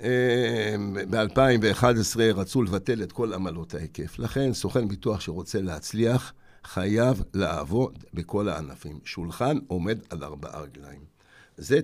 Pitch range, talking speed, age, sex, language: 90-125 Hz, 110 wpm, 60-79, male, Hebrew